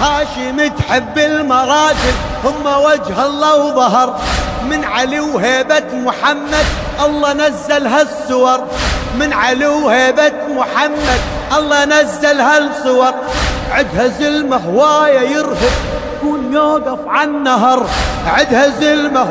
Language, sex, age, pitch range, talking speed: Arabic, male, 30-49, 285-305 Hz, 95 wpm